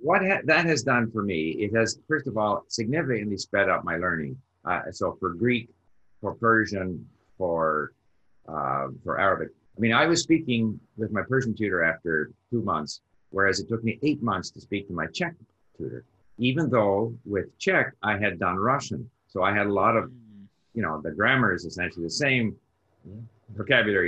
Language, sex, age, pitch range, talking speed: English, male, 50-69, 100-125 Hz, 180 wpm